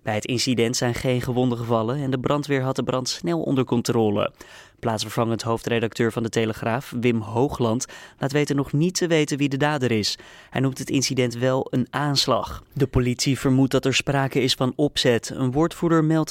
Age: 20-39